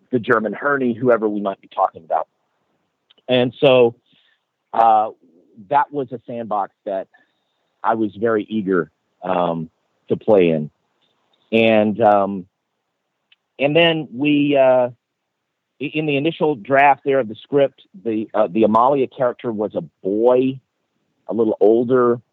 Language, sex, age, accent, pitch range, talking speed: English, male, 50-69, American, 105-130 Hz, 135 wpm